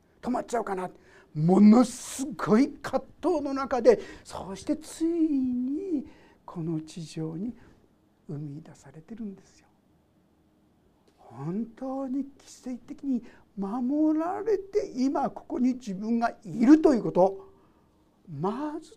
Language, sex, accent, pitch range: Japanese, male, native, 185-295 Hz